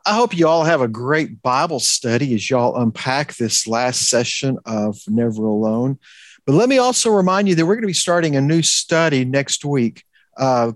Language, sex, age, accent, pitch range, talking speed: English, male, 50-69, American, 125-170 Hz, 200 wpm